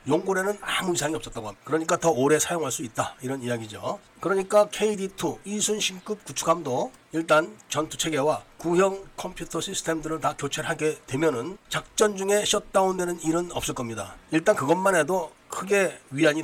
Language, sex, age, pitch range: Korean, male, 40-59, 150-195 Hz